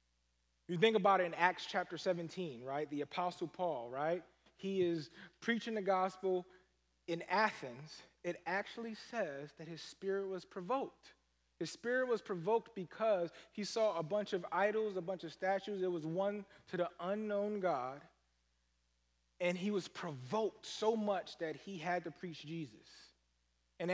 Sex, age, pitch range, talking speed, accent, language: male, 30-49, 155-205 Hz, 160 wpm, American, English